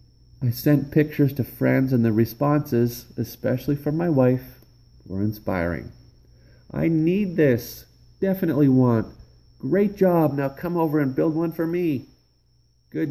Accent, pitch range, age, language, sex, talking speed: American, 110-140 Hz, 40-59, English, male, 135 wpm